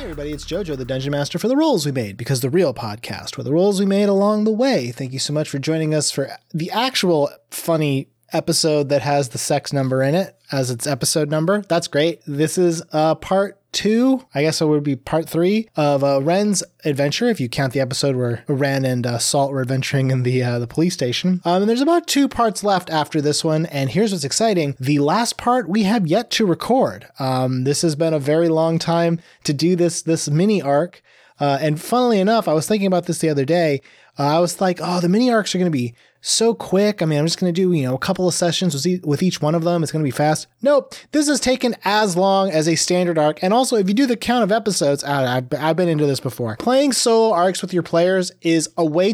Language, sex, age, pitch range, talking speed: English, male, 20-39, 140-190 Hz, 245 wpm